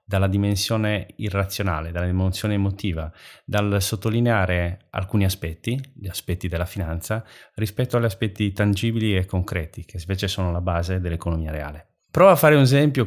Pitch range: 90-110 Hz